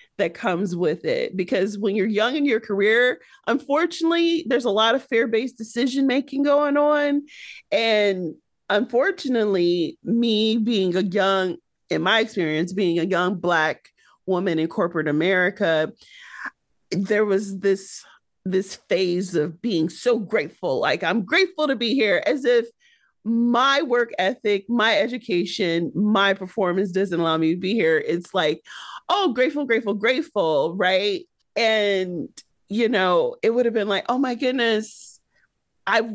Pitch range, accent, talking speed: 185-255 Hz, American, 145 wpm